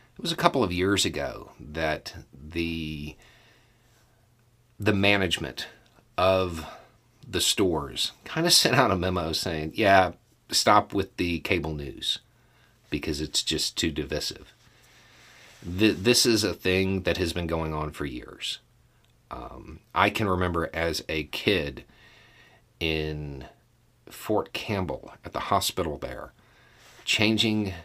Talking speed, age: 125 wpm, 50-69